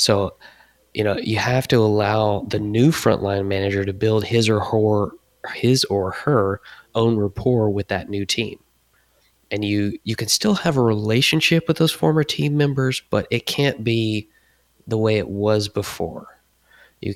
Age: 20-39